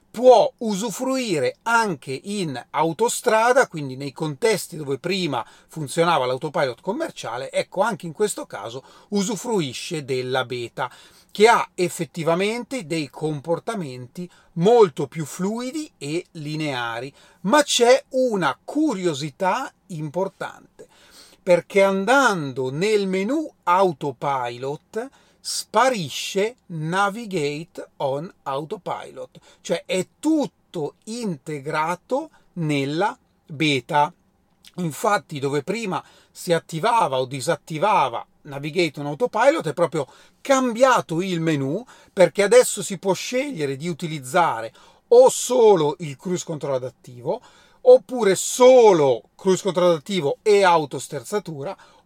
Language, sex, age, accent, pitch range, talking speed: Italian, male, 40-59, native, 155-225 Hz, 100 wpm